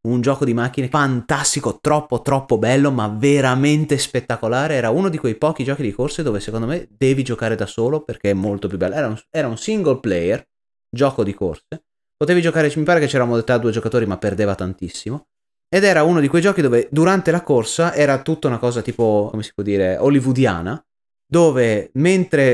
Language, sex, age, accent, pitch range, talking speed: Italian, male, 30-49, native, 120-155 Hz, 195 wpm